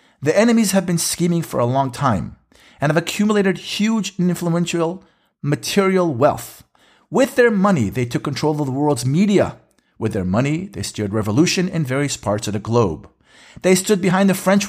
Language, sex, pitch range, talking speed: English, male, 120-190 Hz, 180 wpm